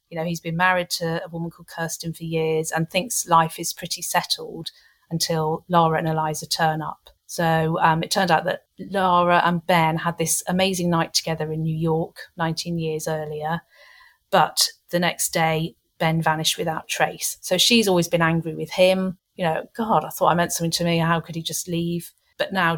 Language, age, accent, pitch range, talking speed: English, 40-59, British, 165-190 Hz, 200 wpm